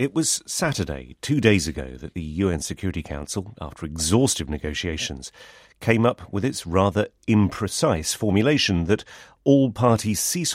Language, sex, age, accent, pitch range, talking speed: English, male, 40-59, British, 80-110 Hz, 140 wpm